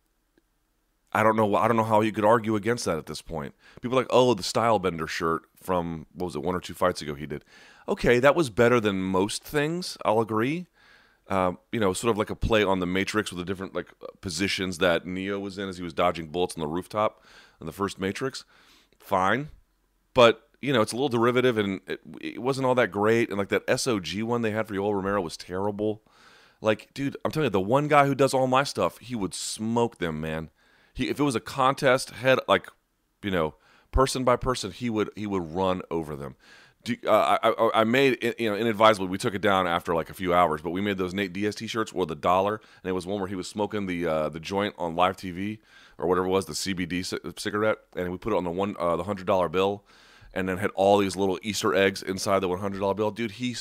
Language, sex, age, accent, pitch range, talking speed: English, male, 30-49, American, 90-115 Hz, 245 wpm